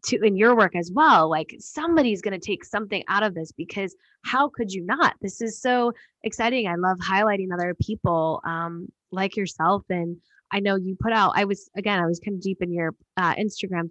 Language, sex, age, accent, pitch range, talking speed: English, female, 10-29, American, 180-225 Hz, 215 wpm